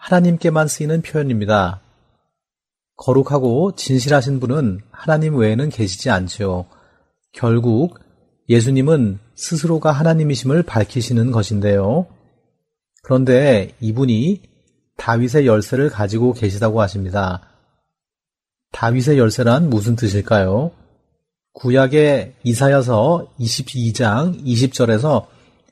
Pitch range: 110-140 Hz